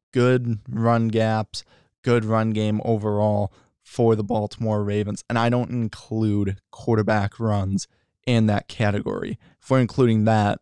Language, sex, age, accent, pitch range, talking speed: English, male, 20-39, American, 110-120 Hz, 135 wpm